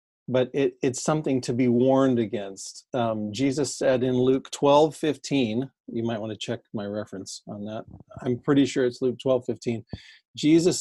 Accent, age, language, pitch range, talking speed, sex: American, 40-59, English, 120-150 Hz, 180 wpm, male